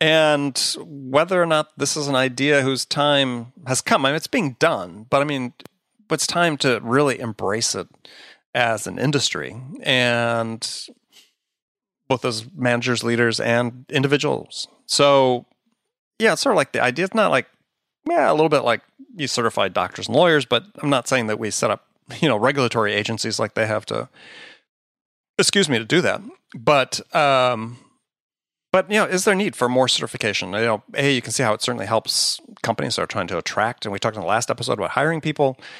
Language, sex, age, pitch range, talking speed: English, male, 30-49, 115-150 Hz, 195 wpm